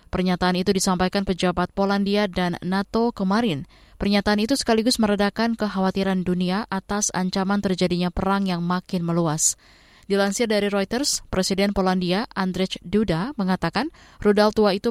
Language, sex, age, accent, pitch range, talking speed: Indonesian, female, 20-39, native, 180-210 Hz, 130 wpm